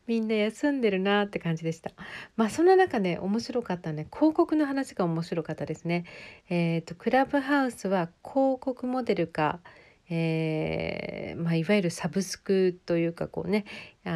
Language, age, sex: Japanese, 40-59, female